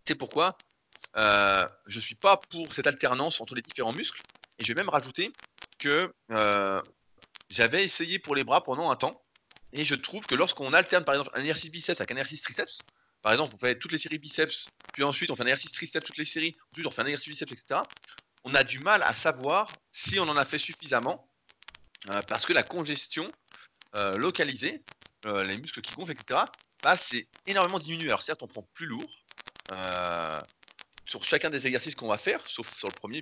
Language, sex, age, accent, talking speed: French, male, 30-49, French, 210 wpm